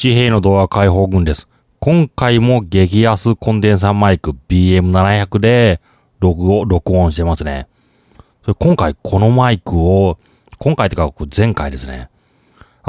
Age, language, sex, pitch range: 30-49, Japanese, male, 85-115 Hz